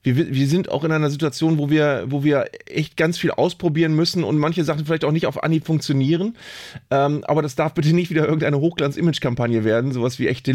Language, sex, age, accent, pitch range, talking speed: German, male, 30-49, German, 140-170 Hz, 215 wpm